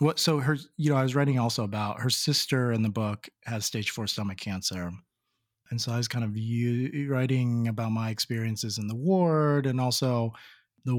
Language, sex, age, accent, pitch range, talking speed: English, male, 30-49, American, 105-130 Hz, 200 wpm